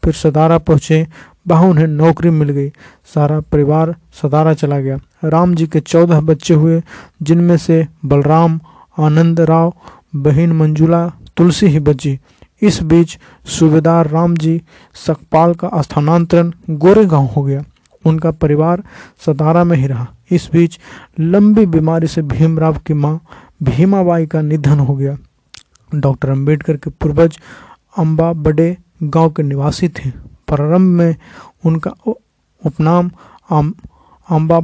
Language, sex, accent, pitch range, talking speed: Hindi, male, native, 155-170 Hz, 130 wpm